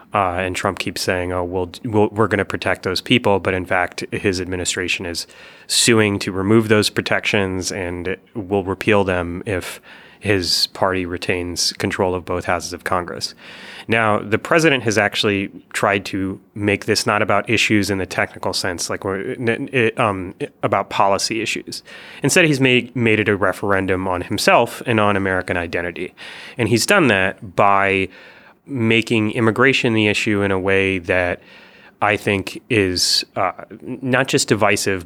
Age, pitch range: 30-49, 95-110 Hz